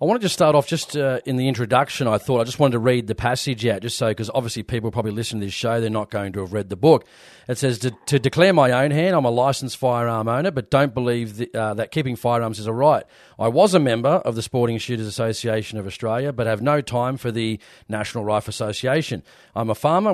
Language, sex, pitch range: English, male, 115-135 Hz